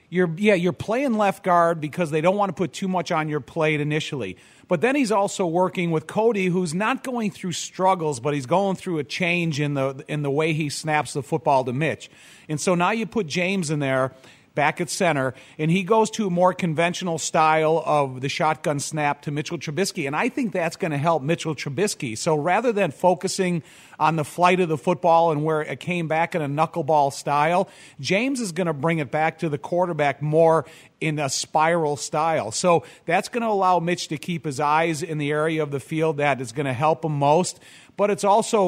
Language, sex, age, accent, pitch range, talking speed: English, male, 40-59, American, 150-180 Hz, 215 wpm